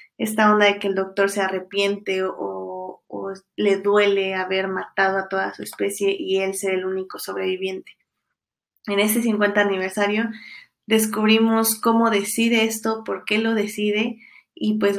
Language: Spanish